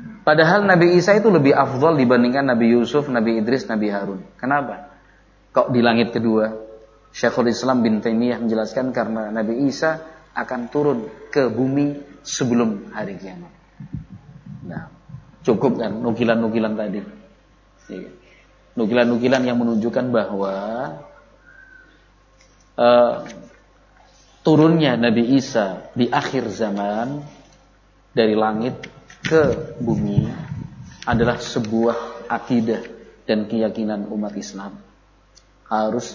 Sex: male